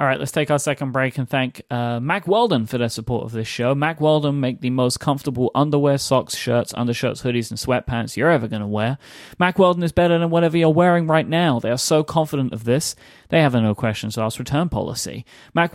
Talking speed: 220 wpm